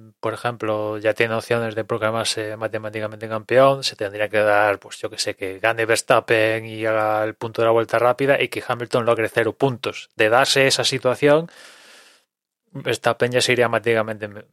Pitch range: 110-130 Hz